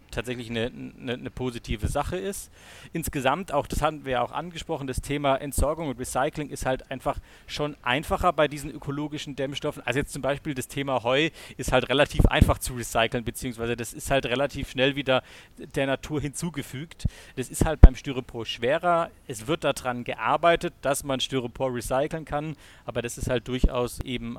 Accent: German